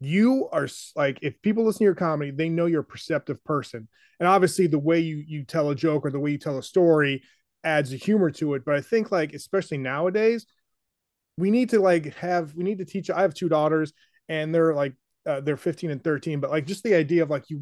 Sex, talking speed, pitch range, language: male, 240 wpm, 145-175 Hz, English